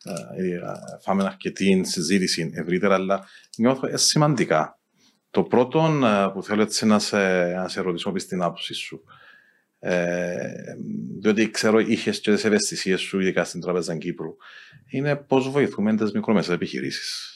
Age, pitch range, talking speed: 40-59, 90-115 Hz, 135 wpm